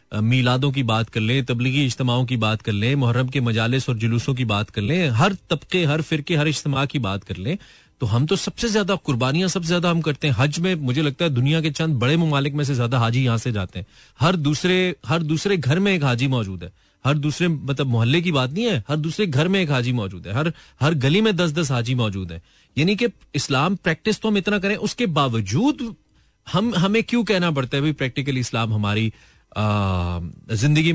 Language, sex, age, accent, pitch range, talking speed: Hindi, male, 30-49, native, 115-165 Hz, 225 wpm